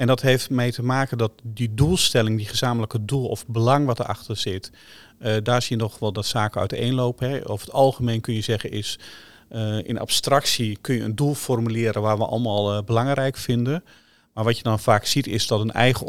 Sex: male